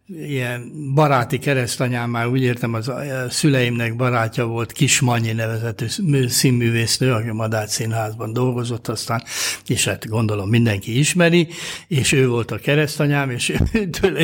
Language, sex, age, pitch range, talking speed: Hungarian, male, 60-79, 120-150 Hz, 125 wpm